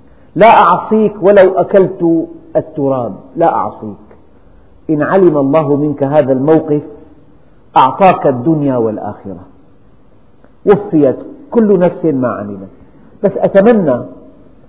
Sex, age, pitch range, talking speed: male, 50-69, 140-190 Hz, 95 wpm